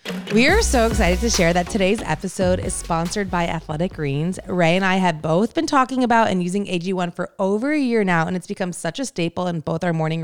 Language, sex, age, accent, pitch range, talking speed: English, female, 20-39, American, 165-210 Hz, 235 wpm